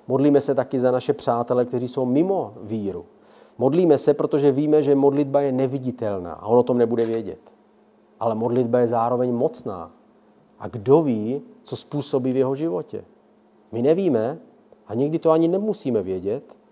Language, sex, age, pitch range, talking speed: Czech, male, 40-59, 120-140 Hz, 160 wpm